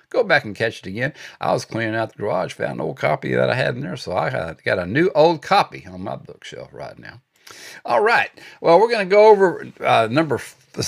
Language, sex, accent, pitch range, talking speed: English, male, American, 100-135 Hz, 235 wpm